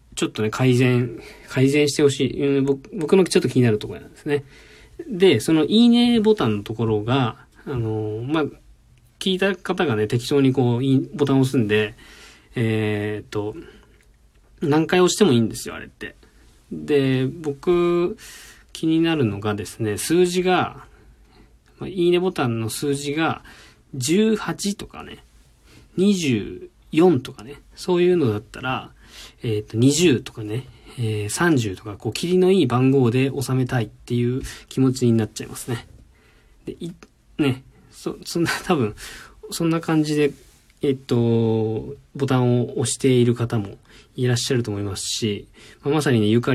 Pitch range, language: 110-150 Hz, Japanese